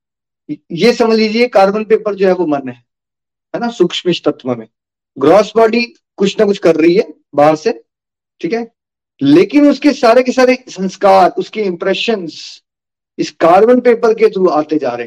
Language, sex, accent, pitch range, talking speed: Hindi, male, native, 155-225 Hz, 165 wpm